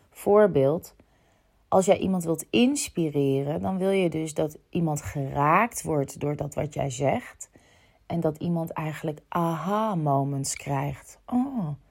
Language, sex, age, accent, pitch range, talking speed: Dutch, female, 30-49, Dutch, 145-190 Hz, 130 wpm